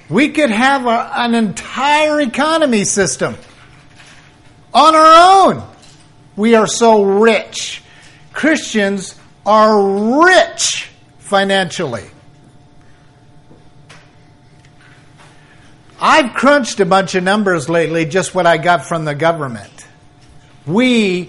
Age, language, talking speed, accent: 50-69, English, 95 wpm, American